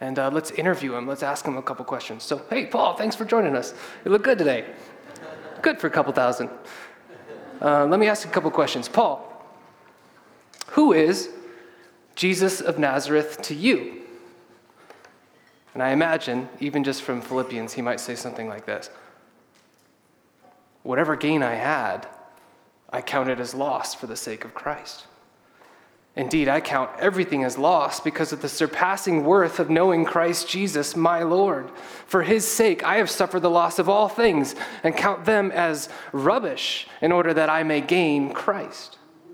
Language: English